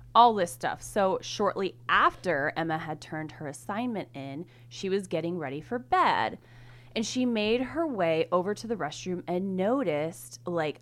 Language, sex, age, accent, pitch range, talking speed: English, female, 20-39, American, 145-230 Hz, 165 wpm